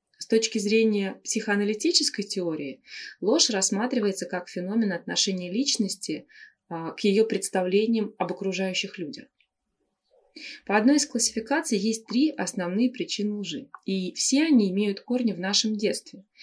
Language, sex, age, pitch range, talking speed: Russian, female, 20-39, 185-240 Hz, 125 wpm